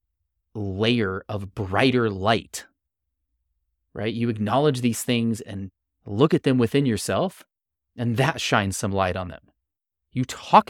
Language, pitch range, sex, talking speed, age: English, 80-120 Hz, male, 135 wpm, 30-49